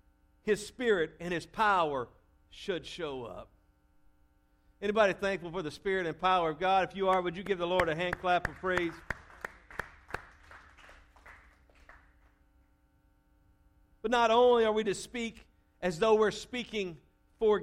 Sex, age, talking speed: male, 50-69, 145 wpm